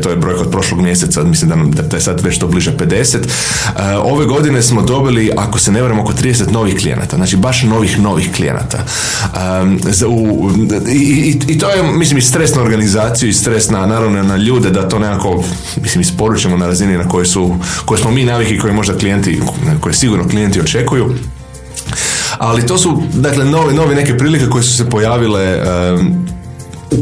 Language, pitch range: Croatian, 95-125 Hz